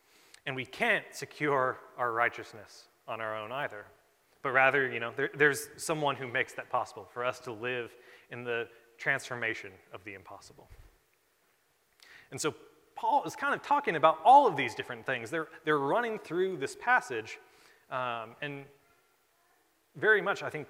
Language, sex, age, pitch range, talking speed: English, male, 30-49, 125-170 Hz, 160 wpm